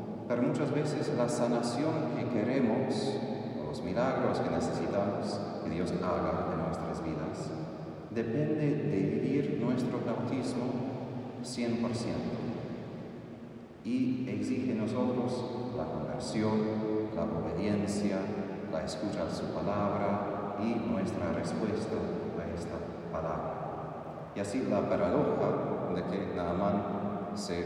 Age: 40-59